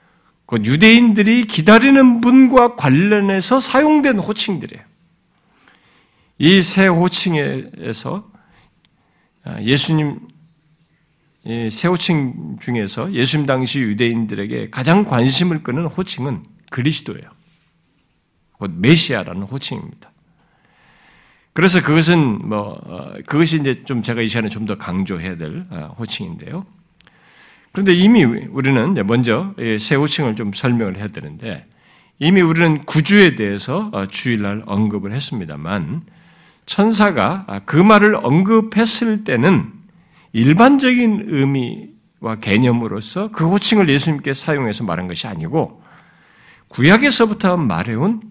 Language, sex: Korean, male